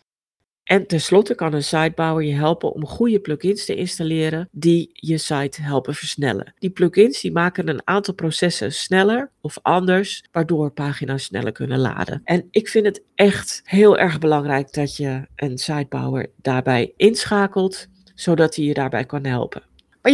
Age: 50-69